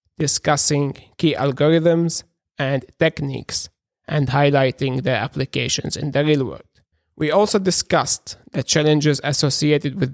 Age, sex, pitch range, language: 30-49, male, 135-155 Hz, English